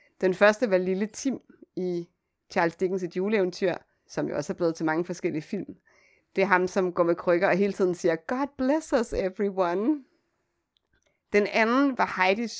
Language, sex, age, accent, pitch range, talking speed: Danish, female, 30-49, native, 170-205 Hz, 180 wpm